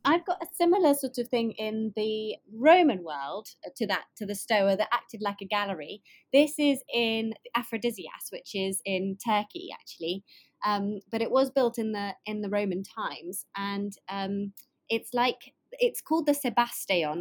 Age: 20-39